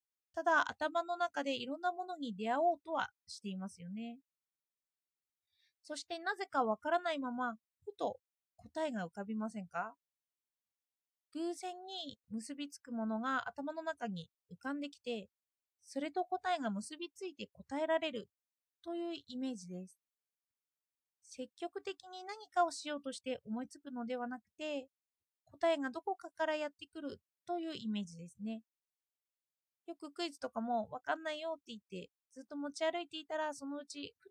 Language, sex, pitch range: Japanese, female, 225-340 Hz